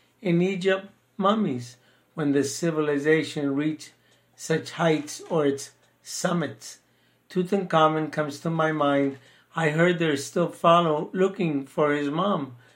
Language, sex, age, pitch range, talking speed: English, male, 60-79, 140-175 Hz, 120 wpm